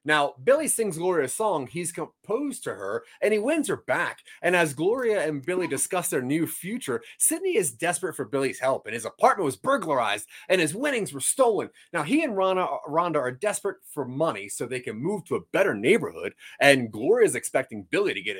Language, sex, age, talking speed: English, male, 30-49, 205 wpm